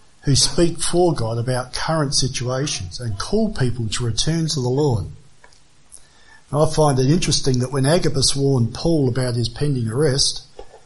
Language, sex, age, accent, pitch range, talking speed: English, male, 50-69, Australian, 120-155 Hz, 155 wpm